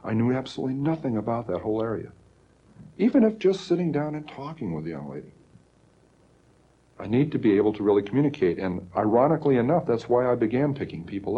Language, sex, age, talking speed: English, male, 60-79, 190 wpm